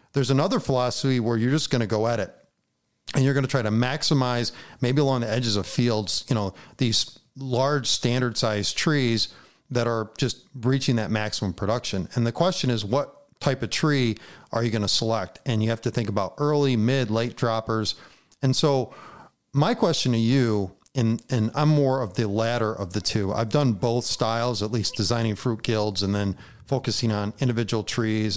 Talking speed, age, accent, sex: 195 wpm, 40-59, American, male